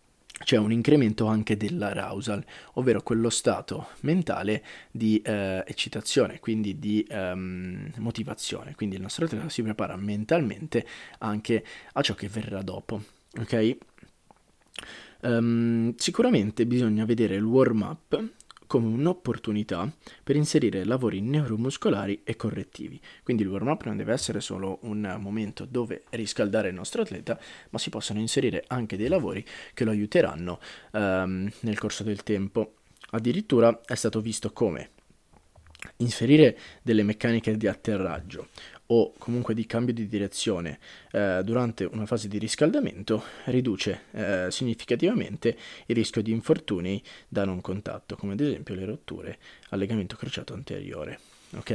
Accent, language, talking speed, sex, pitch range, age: native, Italian, 135 wpm, male, 100-115 Hz, 20-39